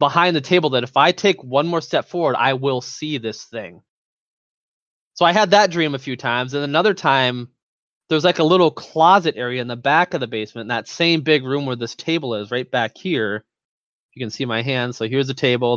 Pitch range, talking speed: 120-155 Hz, 230 wpm